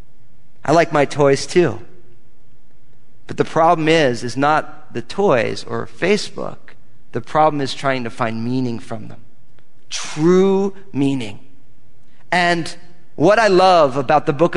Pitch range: 130-180 Hz